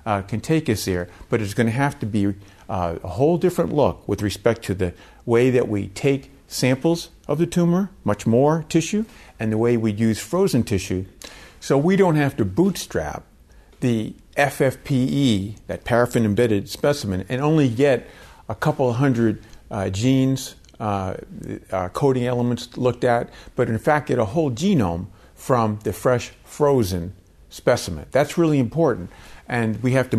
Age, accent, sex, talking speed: 50-69, American, male, 165 wpm